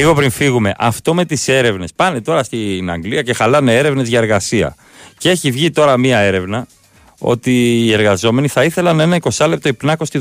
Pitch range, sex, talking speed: 100-145 Hz, male, 190 wpm